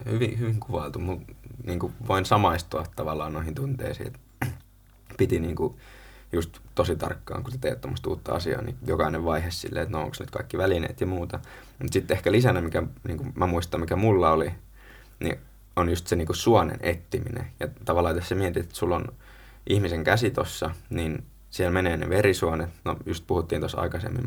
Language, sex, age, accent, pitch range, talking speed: Finnish, male, 20-39, native, 85-120 Hz, 185 wpm